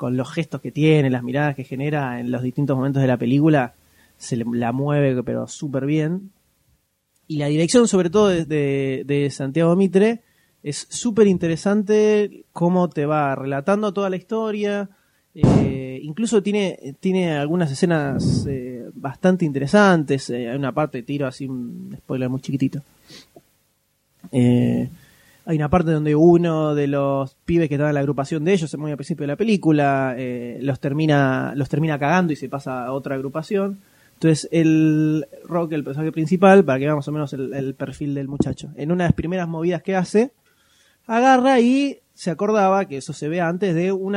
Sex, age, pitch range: male, 20-39, 135-180 Hz